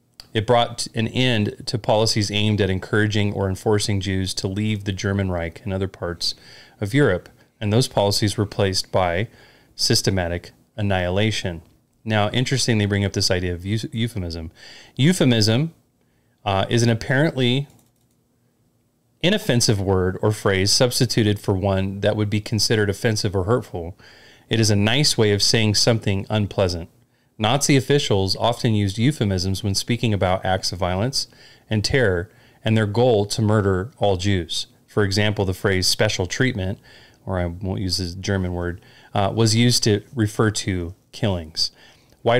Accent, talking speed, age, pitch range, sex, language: American, 155 wpm, 30-49, 95-120 Hz, male, English